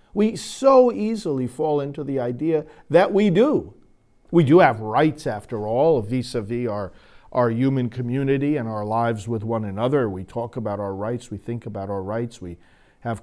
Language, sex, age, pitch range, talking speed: English, male, 50-69, 115-185 Hz, 175 wpm